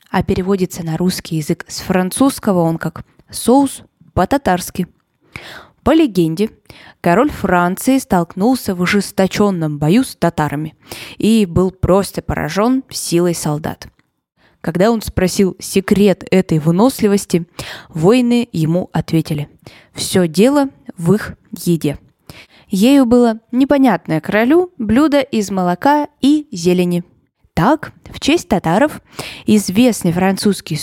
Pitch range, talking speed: 170-225 Hz, 110 wpm